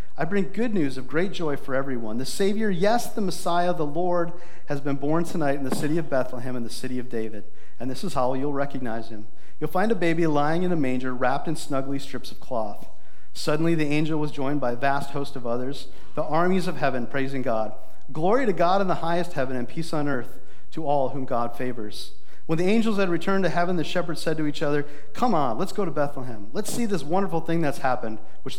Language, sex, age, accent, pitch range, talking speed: English, male, 40-59, American, 125-165 Hz, 235 wpm